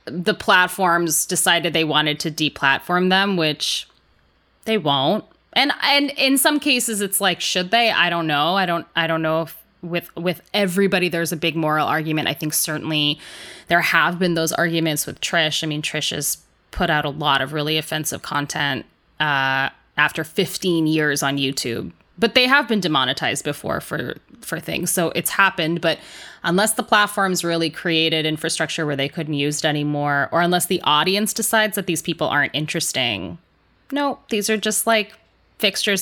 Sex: female